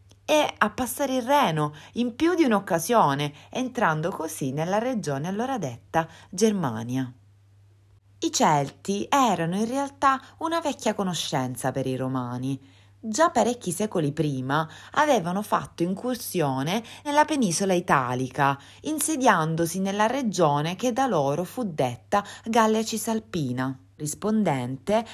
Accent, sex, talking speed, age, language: native, female, 115 wpm, 30-49, Italian